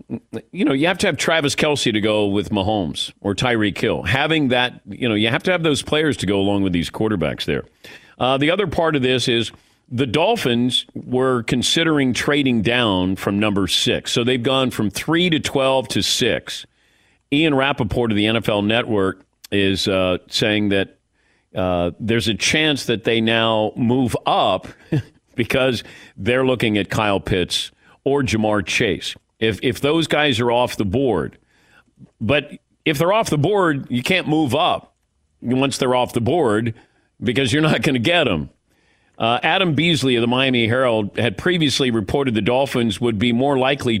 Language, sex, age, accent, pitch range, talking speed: English, male, 50-69, American, 100-130 Hz, 180 wpm